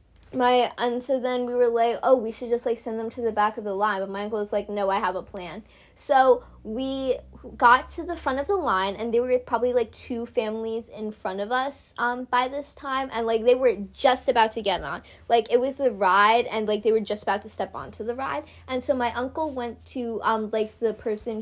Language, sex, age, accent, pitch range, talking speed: English, female, 20-39, American, 205-245 Hz, 250 wpm